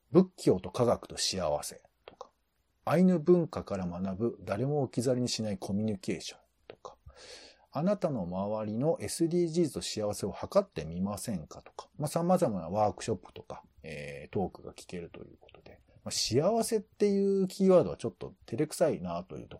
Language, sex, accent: Japanese, male, native